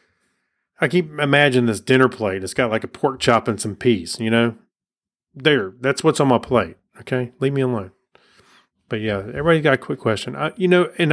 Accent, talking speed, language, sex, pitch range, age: American, 205 wpm, English, male, 105-130 Hz, 30-49